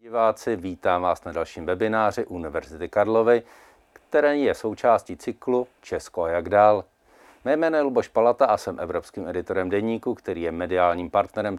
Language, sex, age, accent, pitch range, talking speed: Czech, male, 50-69, native, 105-135 Hz, 140 wpm